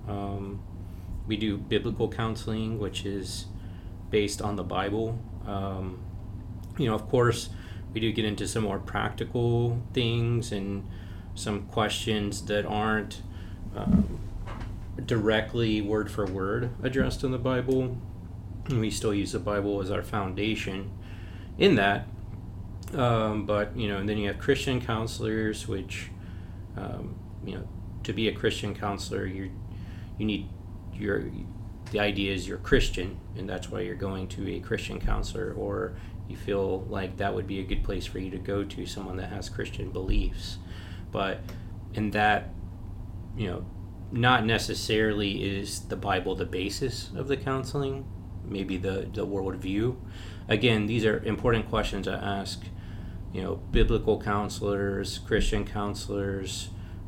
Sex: male